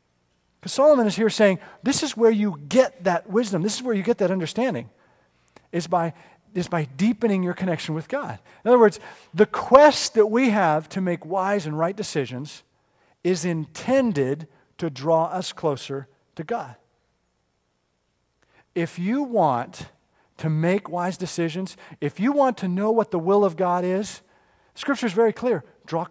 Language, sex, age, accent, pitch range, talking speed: English, male, 50-69, American, 150-210 Hz, 165 wpm